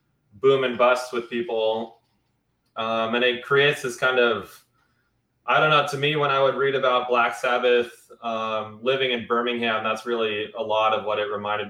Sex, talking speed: male, 185 wpm